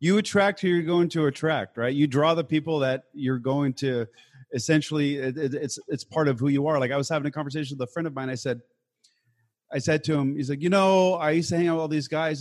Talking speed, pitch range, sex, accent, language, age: 260 wpm, 130-170 Hz, male, American, English, 30-49